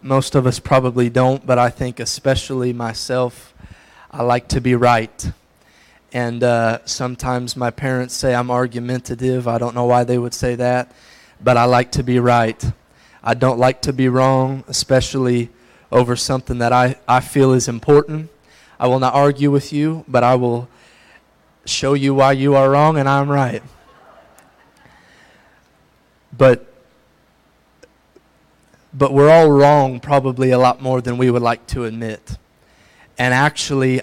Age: 30-49